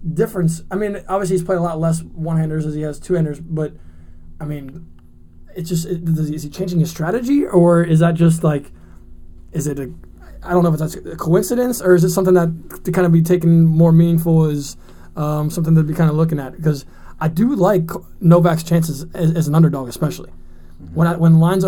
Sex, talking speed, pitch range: male, 215 wpm, 145-170 Hz